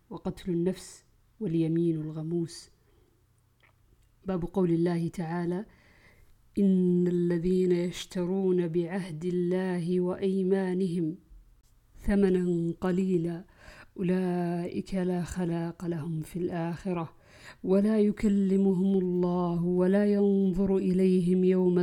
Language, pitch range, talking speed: Arabic, 165-185 Hz, 80 wpm